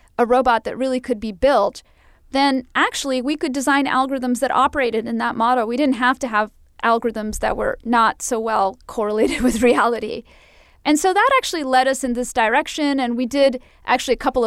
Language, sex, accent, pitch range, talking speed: English, female, American, 230-285 Hz, 195 wpm